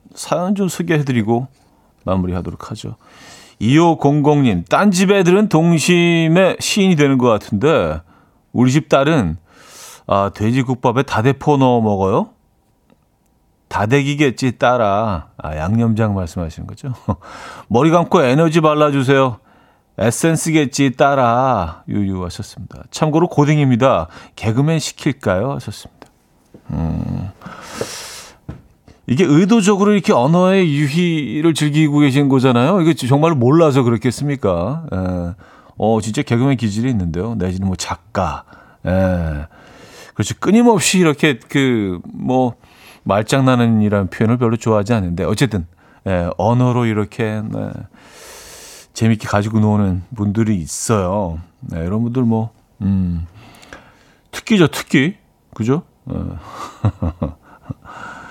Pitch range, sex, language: 100-150 Hz, male, Korean